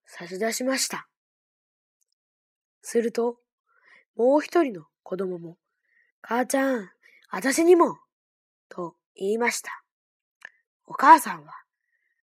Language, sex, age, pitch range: Chinese, female, 20-39, 225-350 Hz